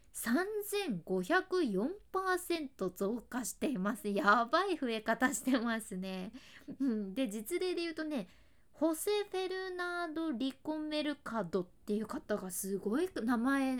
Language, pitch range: Japanese, 215-330 Hz